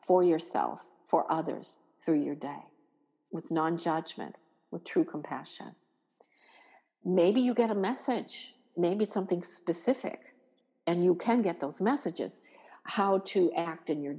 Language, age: English, 50-69